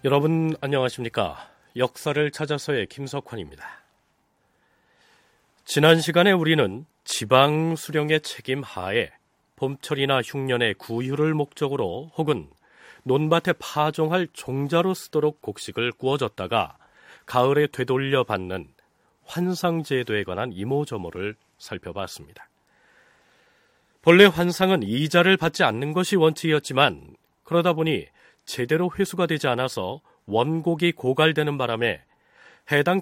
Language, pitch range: Korean, 125-165 Hz